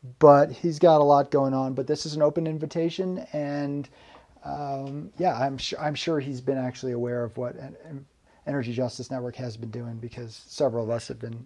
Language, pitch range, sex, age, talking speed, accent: English, 140-175 Hz, male, 40-59, 210 wpm, American